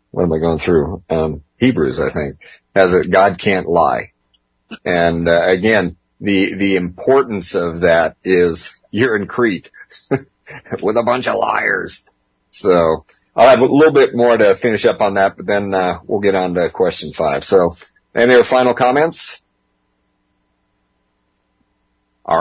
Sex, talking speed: male, 155 wpm